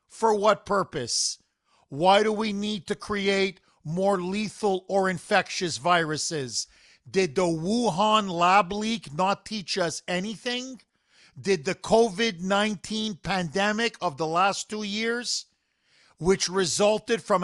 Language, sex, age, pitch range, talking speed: English, male, 50-69, 175-210 Hz, 120 wpm